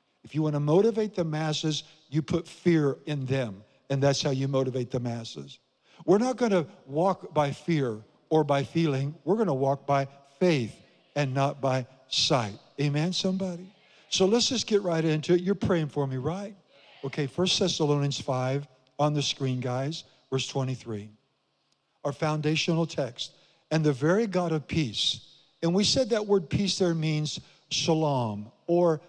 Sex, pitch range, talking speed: male, 140-180 Hz, 170 wpm